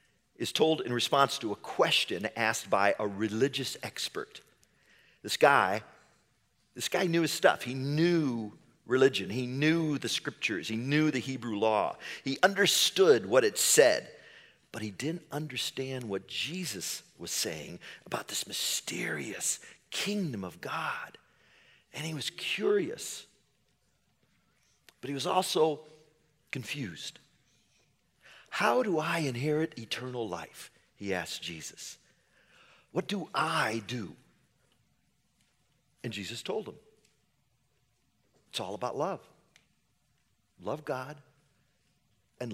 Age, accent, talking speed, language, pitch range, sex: 40-59, American, 115 wpm, English, 120-155 Hz, male